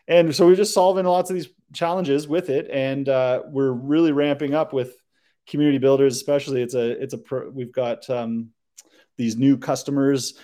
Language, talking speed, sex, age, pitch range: English, 185 wpm, male, 30-49, 120-145 Hz